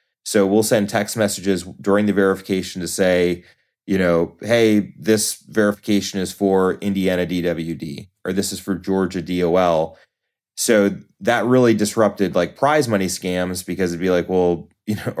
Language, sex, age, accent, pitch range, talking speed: English, male, 30-49, American, 85-105 Hz, 160 wpm